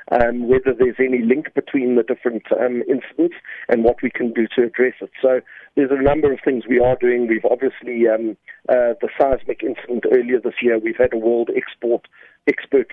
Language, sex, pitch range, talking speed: English, male, 115-145 Hz, 200 wpm